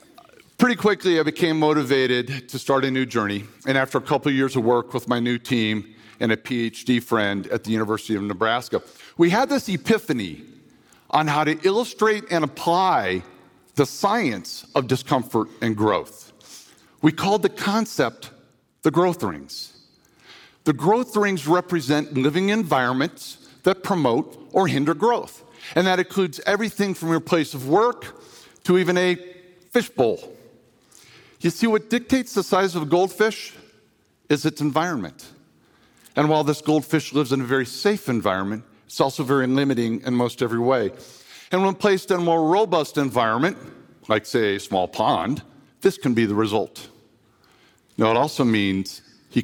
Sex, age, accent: male, 50-69, American